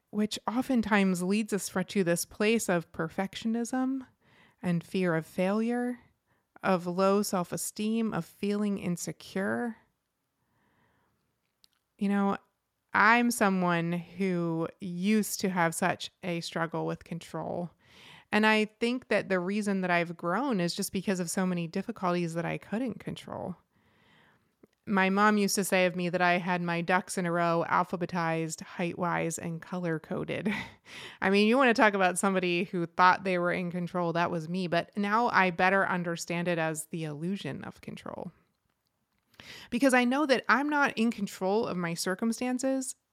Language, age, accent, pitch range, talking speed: English, 30-49, American, 175-210 Hz, 155 wpm